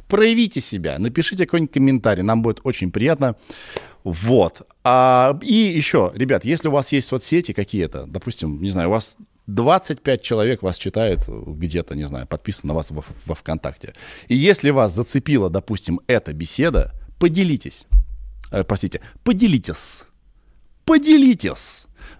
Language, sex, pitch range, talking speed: Russian, male, 90-140 Hz, 130 wpm